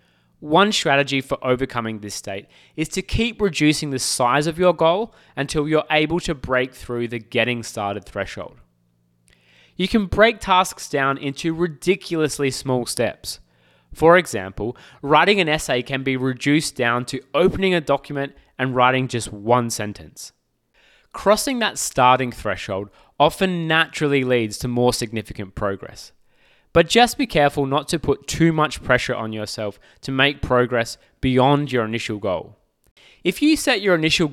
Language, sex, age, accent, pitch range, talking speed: English, male, 20-39, Australian, 120-160 Hz, 150 wpm